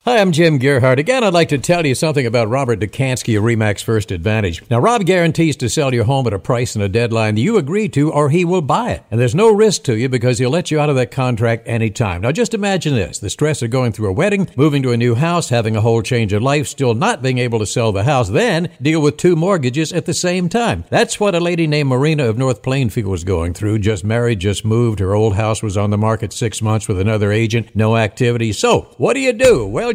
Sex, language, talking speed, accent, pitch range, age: male, English, 260 wpm, American, 115-170 Hz, 60-79